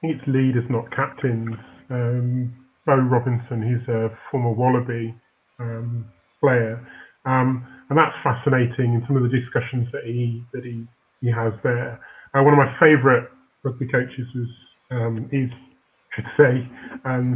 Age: 30-49